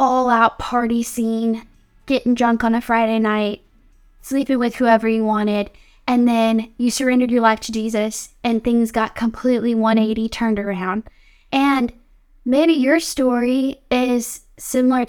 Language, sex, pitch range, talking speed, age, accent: English, female, 225-255 Hz, 140 wpm, 10-29, American